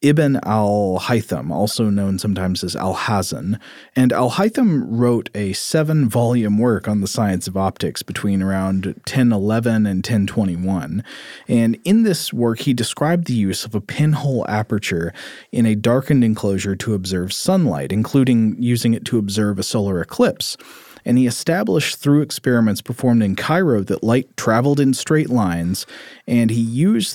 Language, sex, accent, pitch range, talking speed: English, male, American, 105-130 Hz, 150 wpm